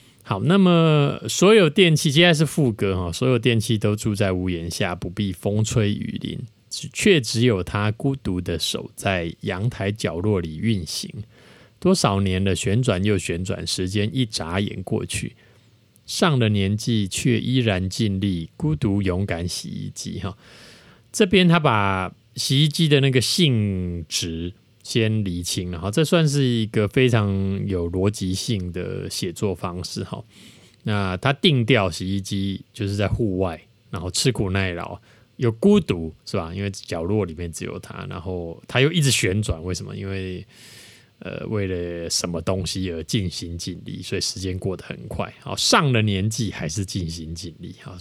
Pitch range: 95-120 Hz